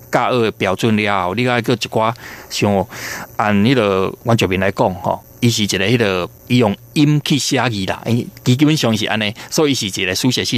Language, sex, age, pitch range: Chinese, male, 20-39, 100-125 Hz